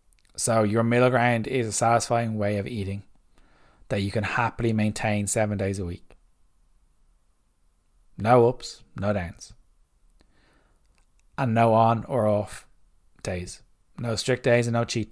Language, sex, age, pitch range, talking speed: English, male, 20-39, 105-120 Hz, 140 wpm